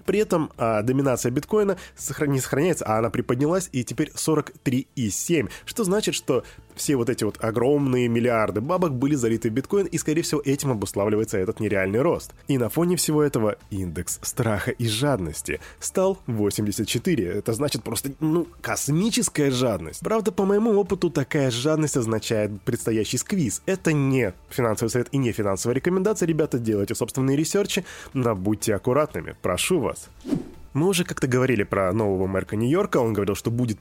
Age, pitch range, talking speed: 20-39, 110-160 Hz, 160 wpm